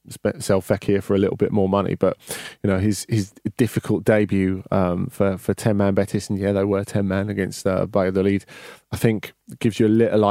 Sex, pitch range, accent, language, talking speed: male, 100-120 Hz, British, English, 220 wpm